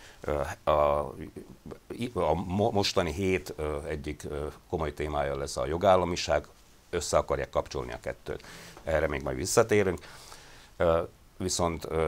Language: Hungarian